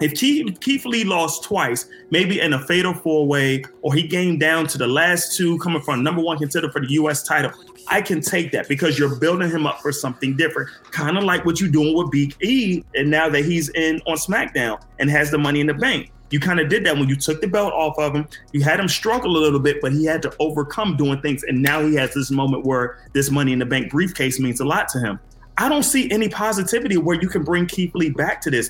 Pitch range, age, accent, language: 140-180 Hz, 30-49, American, English